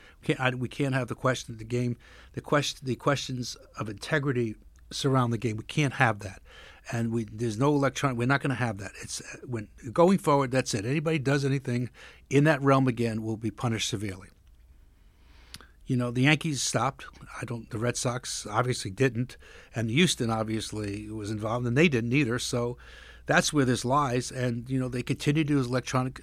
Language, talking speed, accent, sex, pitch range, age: English, 190 wpm, American, male, 115-140 Hz, 60-79